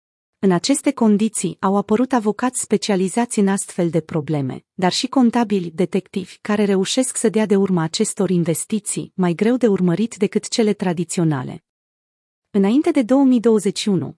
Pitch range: 180-225 Hz